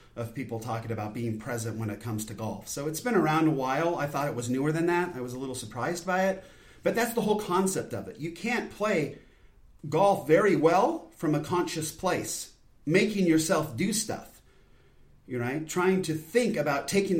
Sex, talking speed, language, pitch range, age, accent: male, 205 wpm, English, 130-175 Hz, 40-59, American